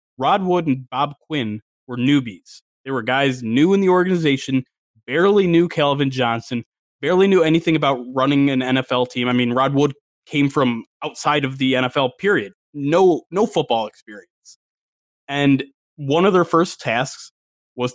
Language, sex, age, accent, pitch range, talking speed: English, male, 20-39, American, 130-180 Hz, 160 wpm